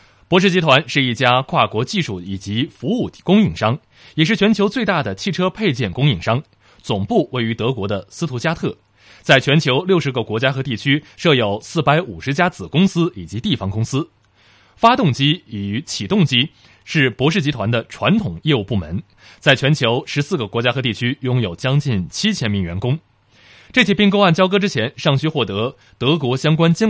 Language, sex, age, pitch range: Chinese, male, 20-39, 110-170 Hz